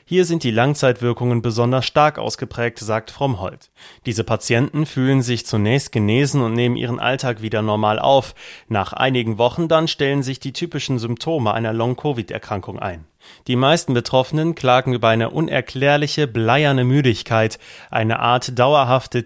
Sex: male